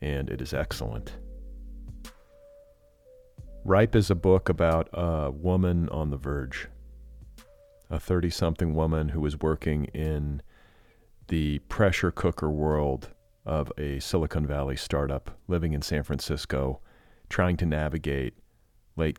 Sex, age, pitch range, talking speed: male, 40-59, 75-95 Hz, 120 wpm